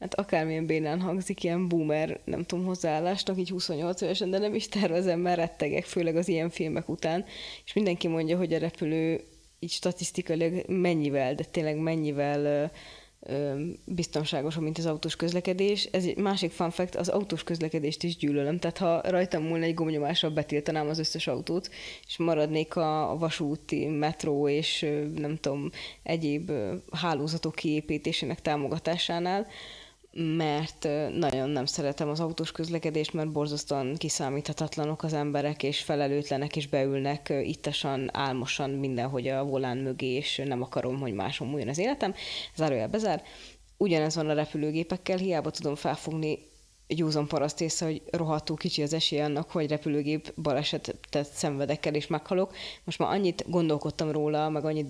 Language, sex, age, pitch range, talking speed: Hungarian, female, 20-39, 150-170 Hz, 150 wpm